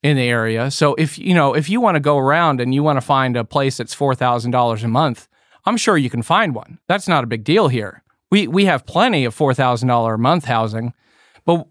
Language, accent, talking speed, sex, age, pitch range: English, American, 255 wpm, male, 40-59, 130-170 Hz